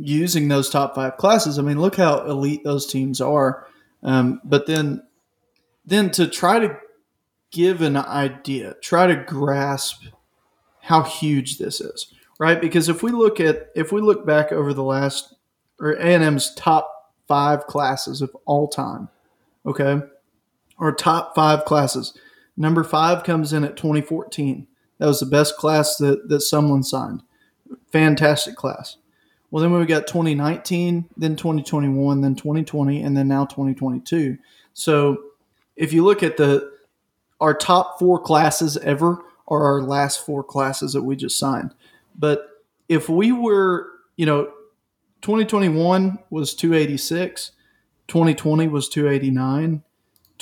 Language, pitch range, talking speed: English, 140-170 Hz, 135 wpm